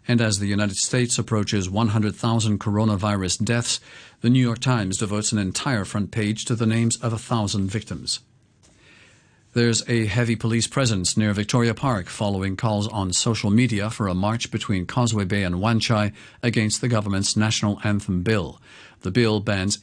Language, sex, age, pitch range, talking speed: English, male, 50-69, 105-120 Hz, 165 wpm